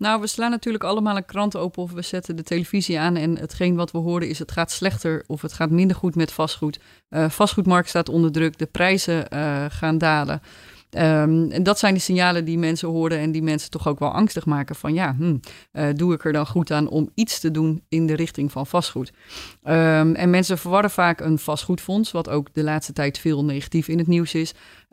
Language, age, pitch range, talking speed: Dutch, 30-49, 150-175 Hz, 220 wpm